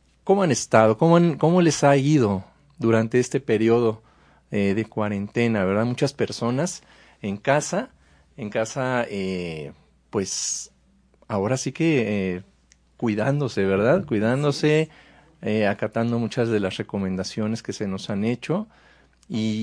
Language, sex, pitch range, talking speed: Spanish, male, 110-140 Hz, 130 wpm